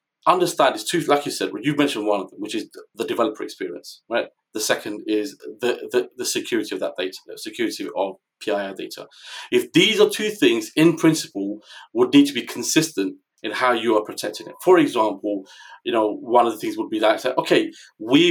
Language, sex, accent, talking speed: English, male, British, 210 wpm